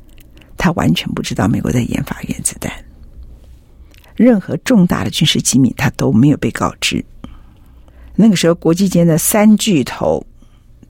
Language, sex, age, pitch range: Chinese, female, 50-69, 140-210 Hz